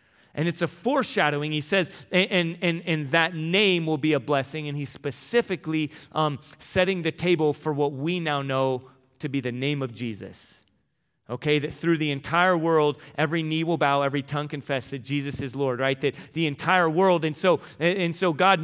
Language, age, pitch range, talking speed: English, 30-49, 140-175 Hz, 195 wpm